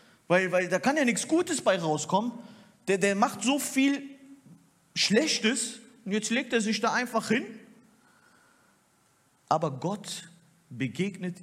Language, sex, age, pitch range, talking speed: German, male, 50-69, 195-285 Hz, 135 wpm